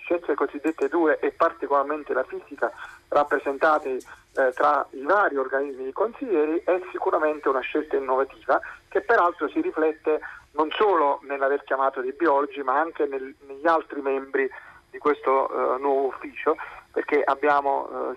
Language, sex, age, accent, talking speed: Italian, male, 40-59, native, 145 wpm